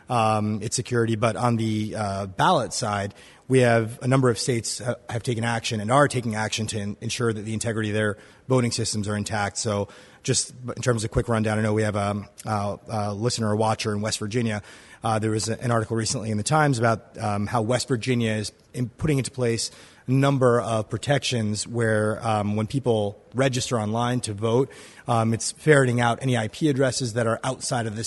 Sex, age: male, 30-49